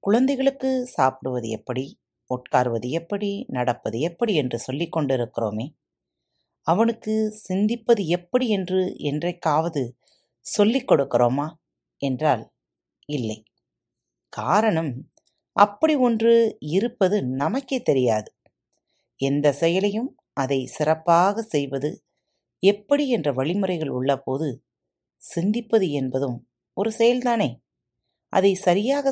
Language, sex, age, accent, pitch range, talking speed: Tamil, female, 30-49, native, 125-210 Hz, 80 wpm